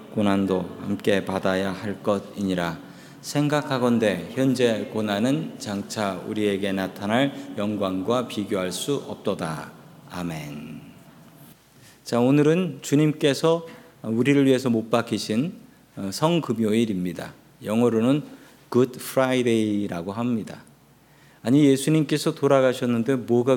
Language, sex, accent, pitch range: Korean, male, native, 105-140 Hz